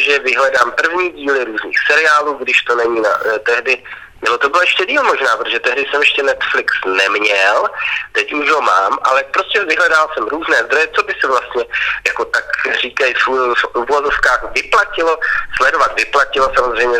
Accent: native